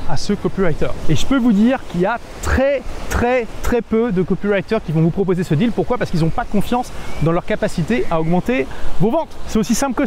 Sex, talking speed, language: male, 240 wpm, French